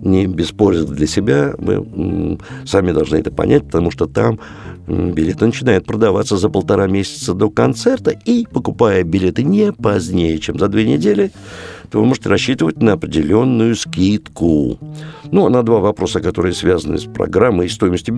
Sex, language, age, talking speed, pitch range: male, Russian, 60-79, 155 wpm, 90-130 Hz